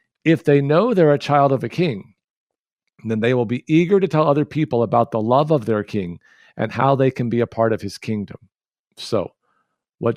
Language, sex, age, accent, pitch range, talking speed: English, male, 50-69, American, 115-160 Hz, 210 wpm